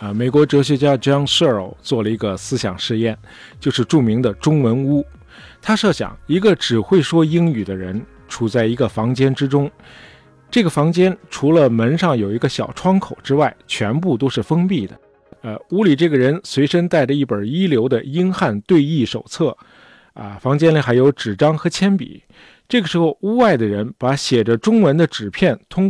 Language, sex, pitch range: Chinese, male, 115-170 Hz